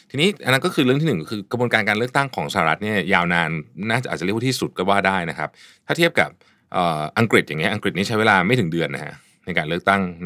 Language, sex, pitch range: Thai, male, 90-135 Hz